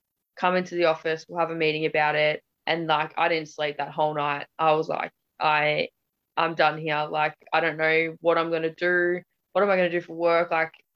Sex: female